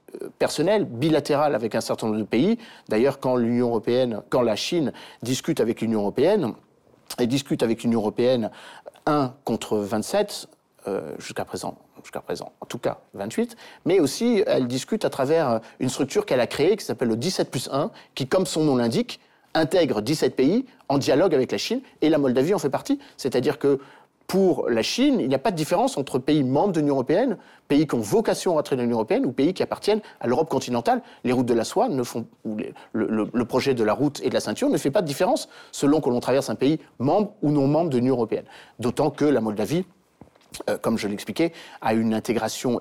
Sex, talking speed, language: male, 215 wpm, French